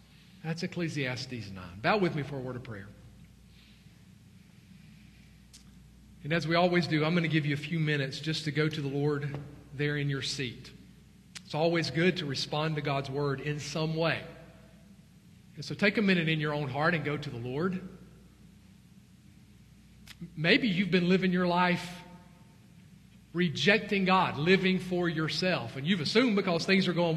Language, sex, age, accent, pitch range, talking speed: English, male, 40-59, American, 150-210 Hz, 170 wpm